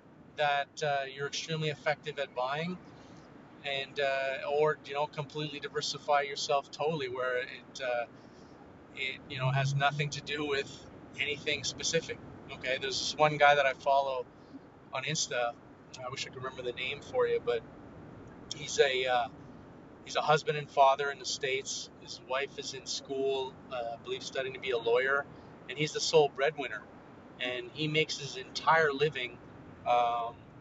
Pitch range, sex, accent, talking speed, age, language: 130-150 Hz, male, American, 165 wpm, 30-49, English